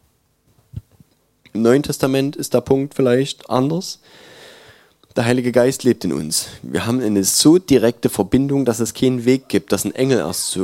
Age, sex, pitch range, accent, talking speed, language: 20-39, male, 100-130 Hz, German, 170 wpm, German